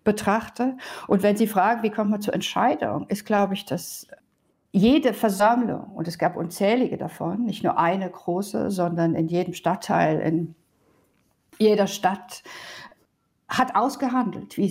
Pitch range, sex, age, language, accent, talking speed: 185-235 Hz, female, 50-69, German, German, 145 wpm